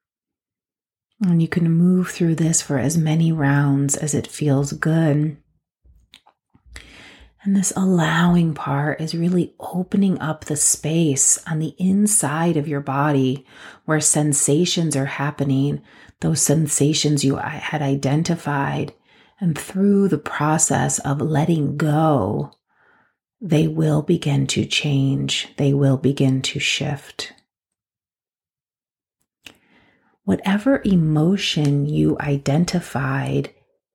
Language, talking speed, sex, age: English, 105 wpm, female, 30-49